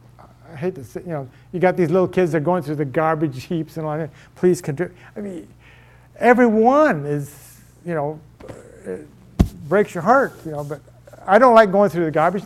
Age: 50-69